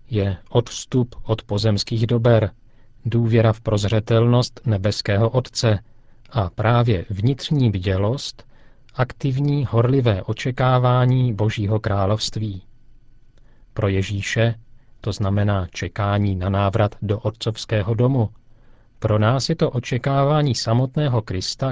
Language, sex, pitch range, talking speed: Czech, male, 105-125 Hz, 100 wpm